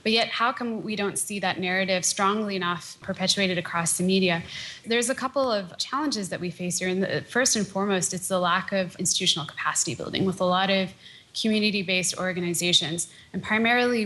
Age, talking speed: 20-39, 180 wpm